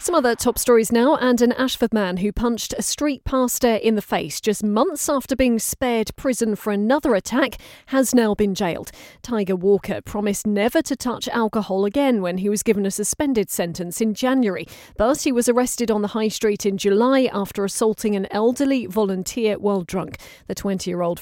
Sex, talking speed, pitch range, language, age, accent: female, 185 wpm, 195-235 Hz, English, 40-59, British